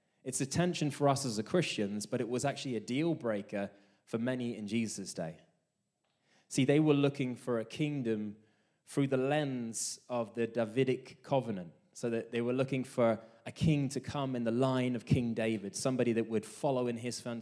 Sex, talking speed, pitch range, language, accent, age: male, 190 wpm, 110-135 Hz, English, British, 20-39